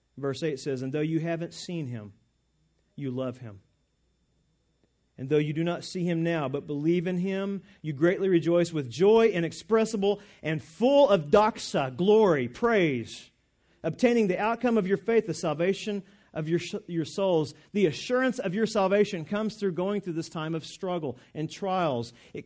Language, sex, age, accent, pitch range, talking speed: English, male, 40-59, American, 145-195 Hz, 170 wpm